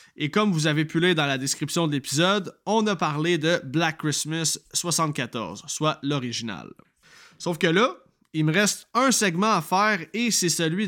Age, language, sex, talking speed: 20-39, French, male, 180 wpm